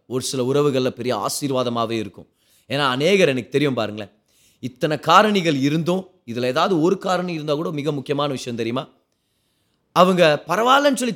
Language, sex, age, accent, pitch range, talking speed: Tamil, male, 30-49, native, 125-195 Hz, 145 wpm